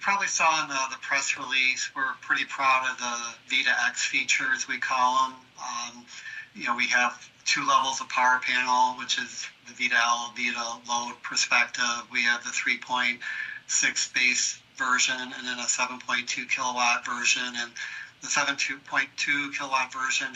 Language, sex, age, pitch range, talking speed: English, male, 40-59, 120-130 Hz, 155 wpm